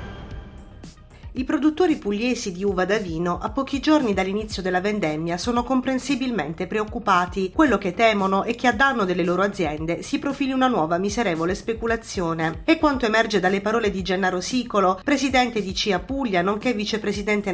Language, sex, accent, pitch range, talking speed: Italian, female, native, 185-250 Hz, 155 wpm